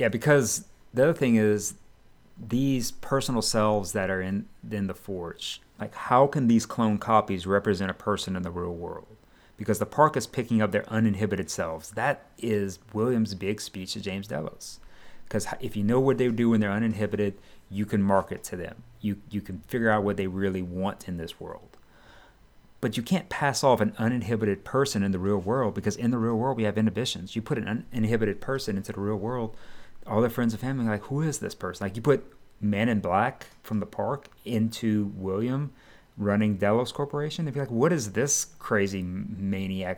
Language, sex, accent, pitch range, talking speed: English, male, American, 100-115 Hz, 200 wpm